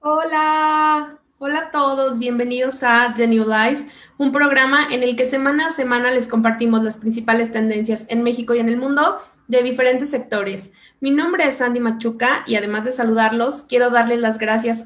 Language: Spanish